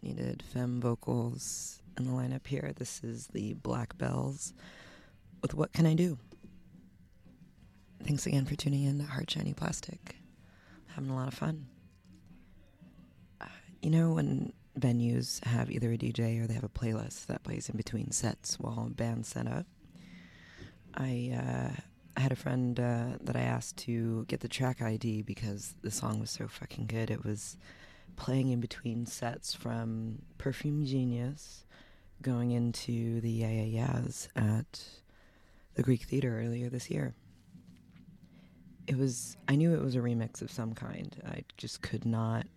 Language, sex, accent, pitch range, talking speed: English, female, American, 110-130 Hz, 165 wpm